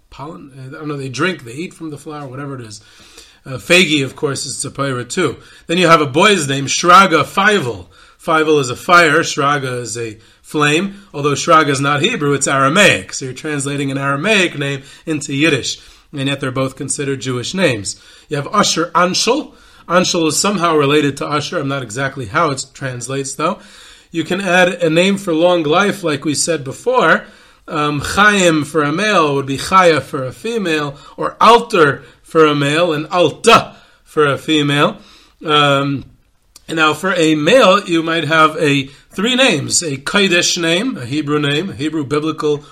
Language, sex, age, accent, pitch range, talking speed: English, male, 30-49, American, 140-175 Hz, 185 wpm